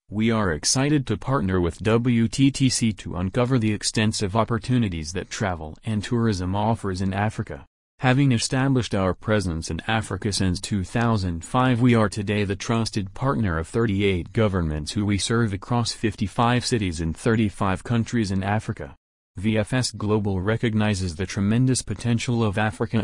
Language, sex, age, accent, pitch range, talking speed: English, male, 30-49, American, 95-115 Hz, 145 wpm